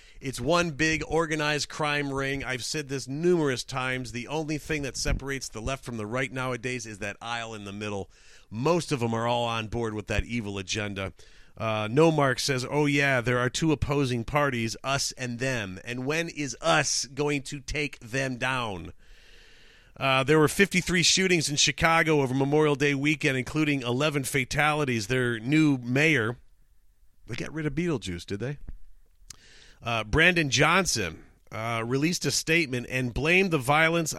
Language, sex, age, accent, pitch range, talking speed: English, male, 40-59, American, 125-160 Hz, 170 wpm